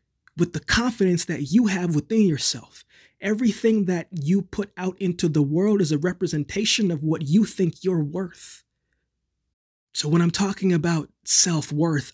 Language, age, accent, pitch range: English, 20-39, American, 150-190 Hz